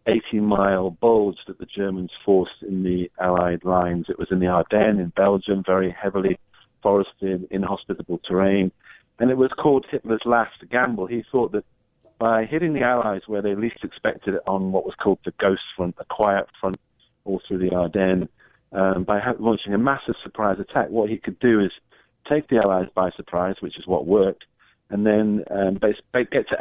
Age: 40-59